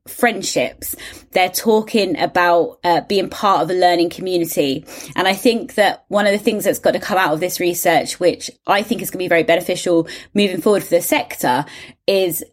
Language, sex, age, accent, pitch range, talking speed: English, female, 20-39, British, 180-235 Hz, 195 wpm